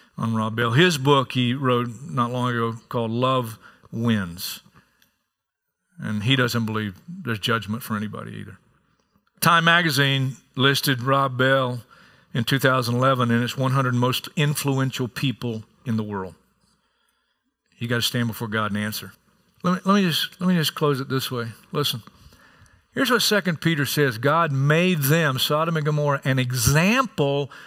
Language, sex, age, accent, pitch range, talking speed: English, male, 50-69, American, 125-185 Hz, 155 wpm